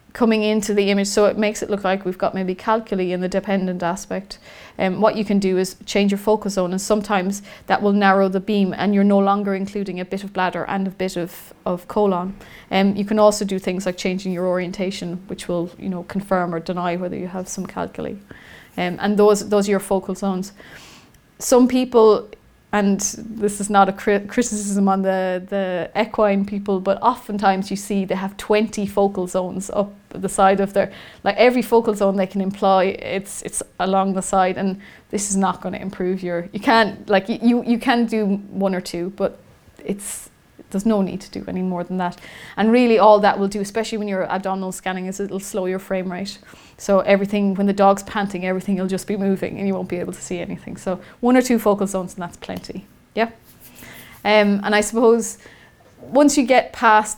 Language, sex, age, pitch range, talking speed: English, female, 30-49, 185-210 Hz, 215 wpm